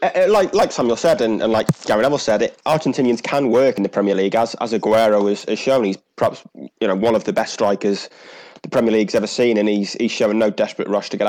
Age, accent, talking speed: 20-39, British, 255 wpm